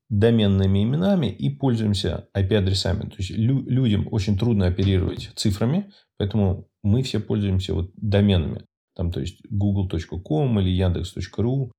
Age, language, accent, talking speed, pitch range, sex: 30-49, Russian, native, 125 wpm, 95-115 Hz, male